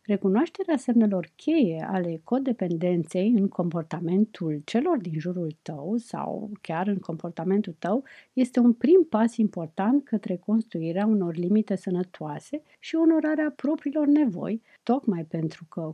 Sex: female